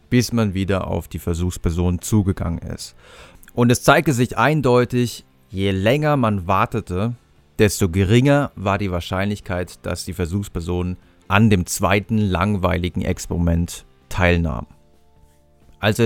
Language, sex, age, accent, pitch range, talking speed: German, male, 30-49, German, 90-110 Hz, 120 wpm